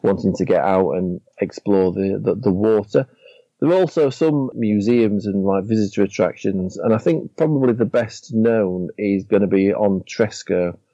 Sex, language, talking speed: male, English, 170 wpm